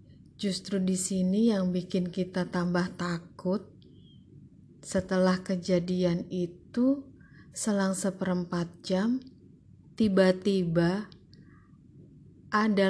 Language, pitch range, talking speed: Indonesian, 170-195 Hz, 75 wpm